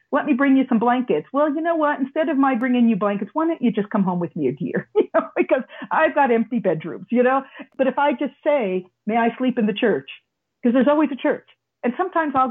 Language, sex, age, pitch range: English, female, 40-59, 225-290 Hz